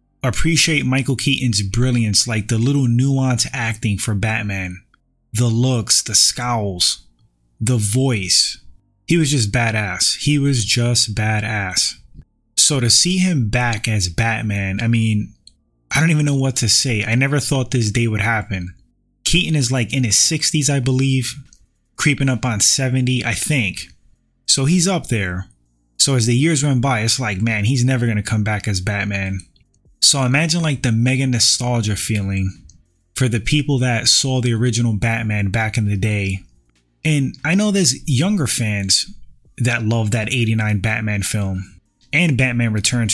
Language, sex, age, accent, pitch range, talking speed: English, male, 20-39, American, 105-130 Hz, 165 wpm